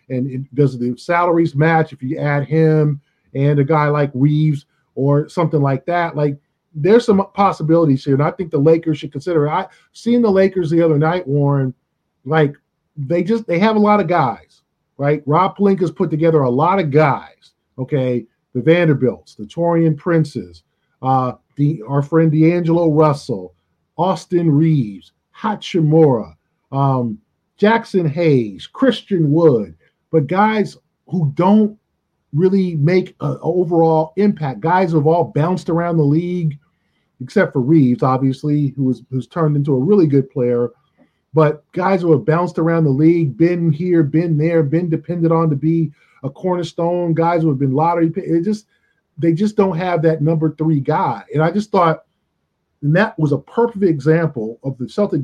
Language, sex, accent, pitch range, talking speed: English, male, American, 140-175 Hz, 170 wpm